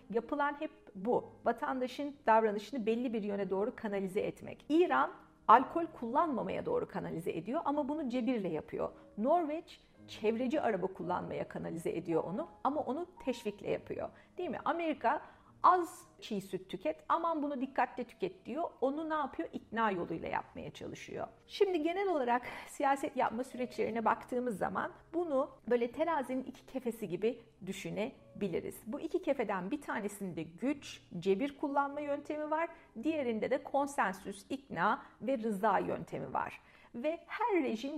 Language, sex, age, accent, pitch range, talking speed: Turkish, female, 50-69, native, 210-300 Hz, 140 wpm